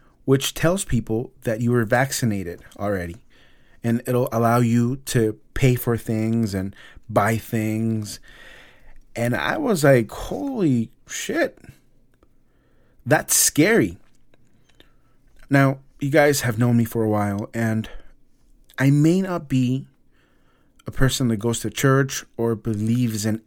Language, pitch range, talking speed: English, 110-140 Hz, 130 wpm